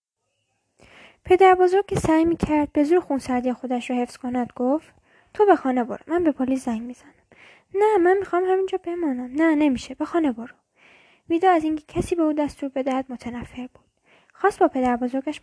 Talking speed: 175 wpm